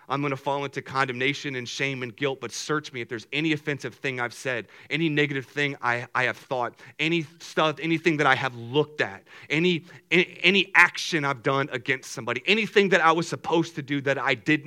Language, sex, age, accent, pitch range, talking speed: English, male, 30-49, American, 140-195 Hz, 215 wpm